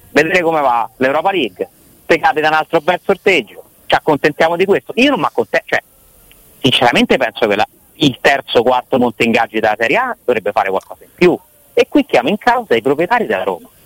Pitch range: 130-210 Hz